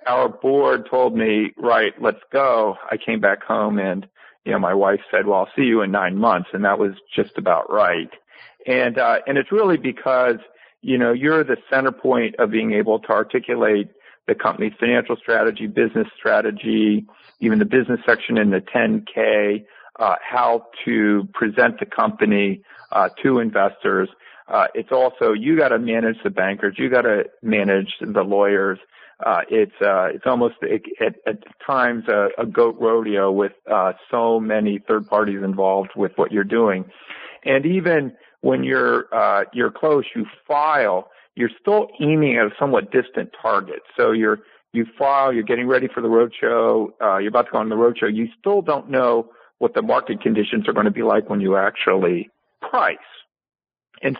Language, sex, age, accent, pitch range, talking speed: English, male, 50-69, American, 105-135 Hz, 175 wpm